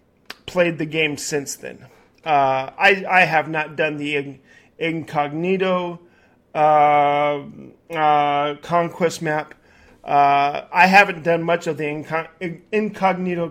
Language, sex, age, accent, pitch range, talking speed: English, male, 40-59, American, 155-195 Hz, 110 wpm